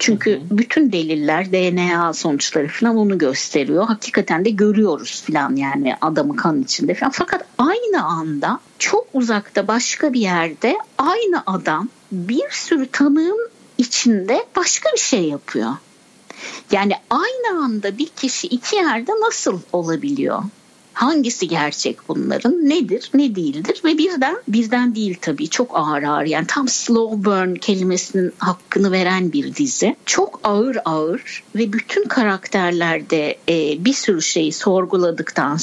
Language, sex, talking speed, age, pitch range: Turkish, female, 130 wpm, 60-79, 180-275 Hz